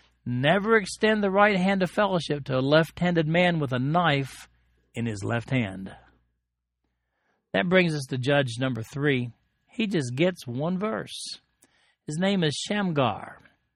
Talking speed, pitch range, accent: 150 wpm, 130-175 Hz, American